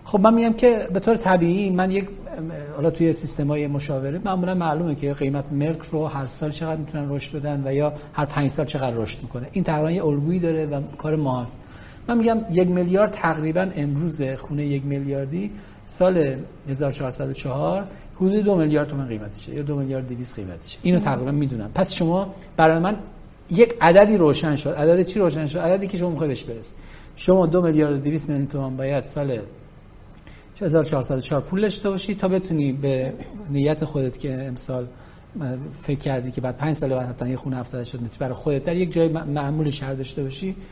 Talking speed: 180 wpm